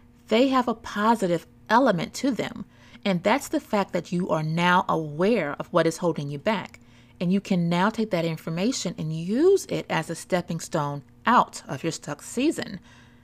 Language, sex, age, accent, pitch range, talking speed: English, female, 30-49, American, 160-215 Hz, 185 wpm